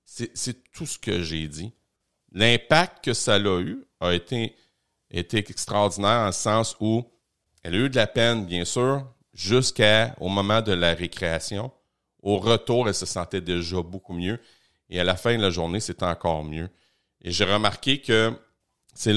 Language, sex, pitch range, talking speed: French, male, 85-115 Hz, 180 wpm